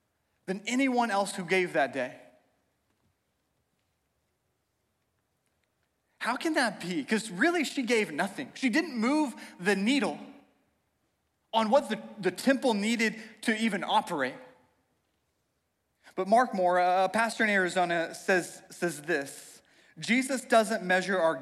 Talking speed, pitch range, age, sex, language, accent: 125 wpm, 195-245 Hz, 30-49, male, English, American